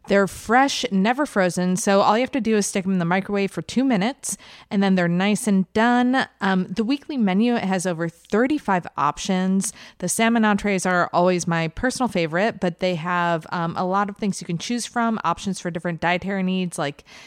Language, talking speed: English, 205 wpm